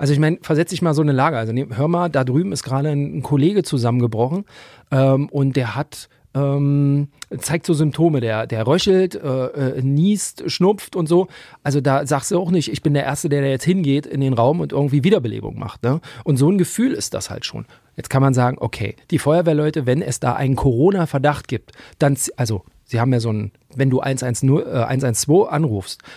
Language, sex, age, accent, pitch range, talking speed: German, male, 40-59, German, 125-155 Hz, 210 wpm